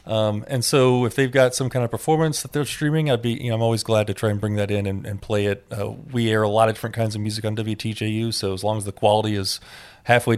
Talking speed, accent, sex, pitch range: 280 wpm, American, male, 105-120 Hz